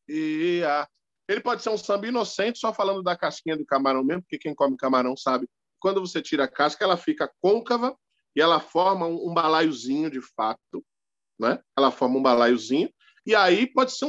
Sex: male